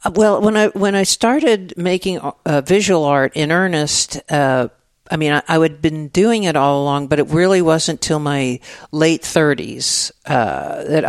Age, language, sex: 50-69, English, male